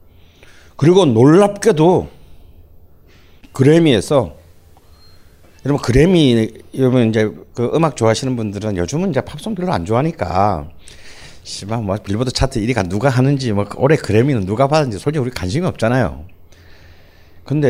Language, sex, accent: Korean, male, native